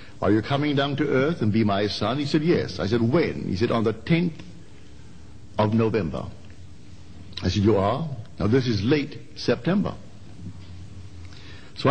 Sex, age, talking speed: male, 60-79, 165 wpm